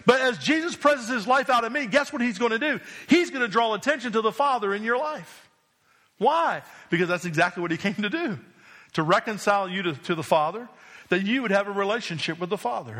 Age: 50-69